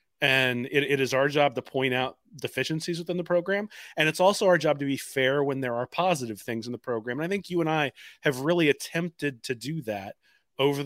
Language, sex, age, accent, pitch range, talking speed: English, male, 30-49, American, 120-145 Hz, 230 wpm